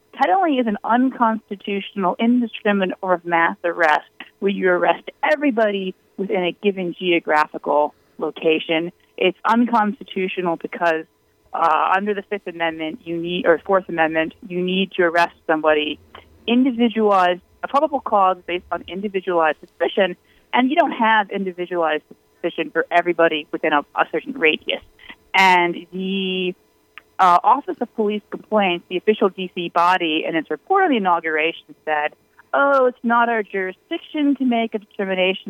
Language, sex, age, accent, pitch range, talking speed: English, female, 30-49, American, 170-230 Hz, 140 wpm